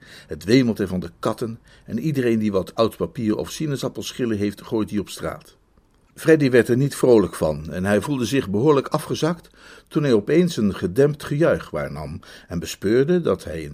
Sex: male